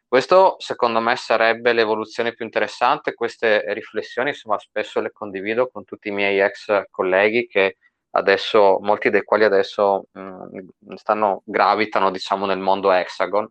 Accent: native